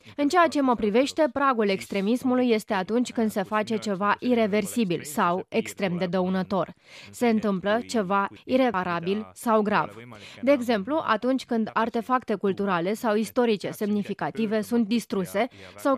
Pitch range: 195-240 Hz